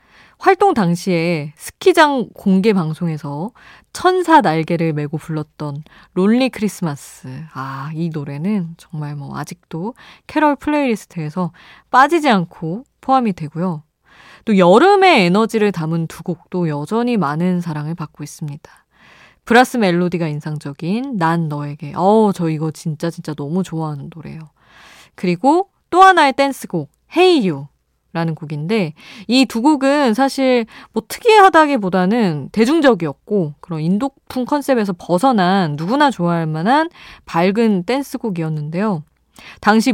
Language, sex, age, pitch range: Korean, female, 20-39, 160-250 Hz